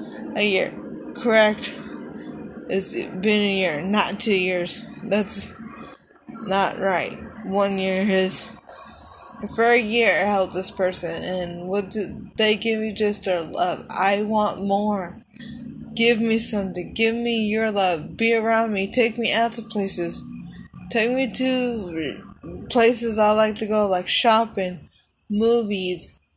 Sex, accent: female, American